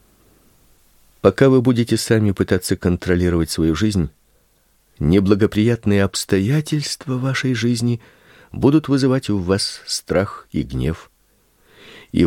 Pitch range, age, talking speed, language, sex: 90-140 Hz, 50-69, 100 wpm, Russian, male